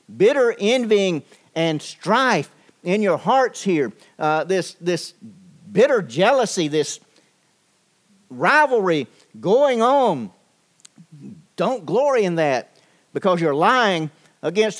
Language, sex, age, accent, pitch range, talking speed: English, male, 50-69, American, 145-200 Hz, 100 wpm